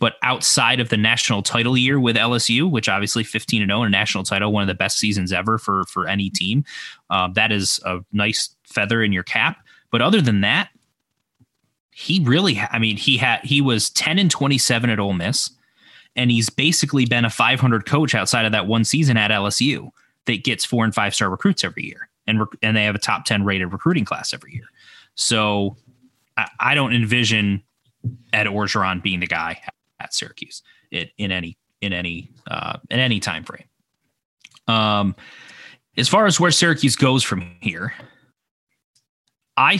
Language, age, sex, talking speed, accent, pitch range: English, 20-39, male, 180 wpm, American, 105-125 Hz